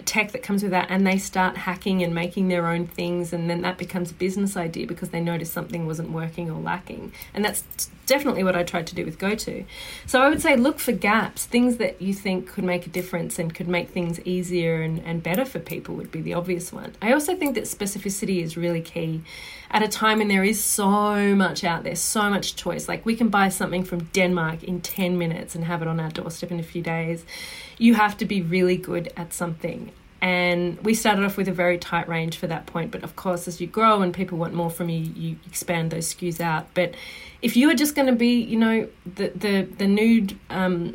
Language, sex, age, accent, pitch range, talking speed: English, female, 30-49, Australian, 175-205 Hz, 235 wpm